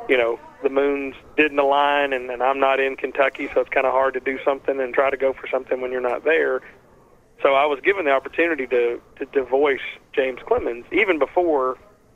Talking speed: 215 wpm